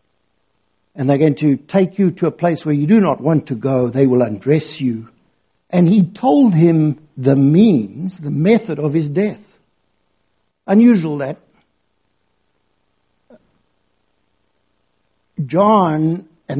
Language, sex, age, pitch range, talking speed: English, male, 60-79, 140-180 Hz, 125 wpm